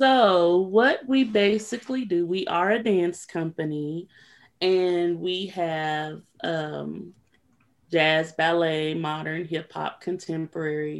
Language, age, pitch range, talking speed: English, 30-49, 150-175 Hz, 110 wpm